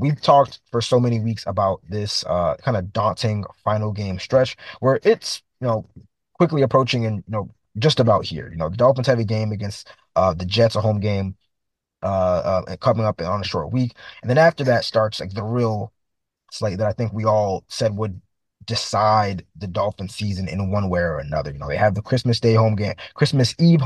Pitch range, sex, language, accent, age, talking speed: 100-120 Hz, male, English, American, 20-39, 210 wpm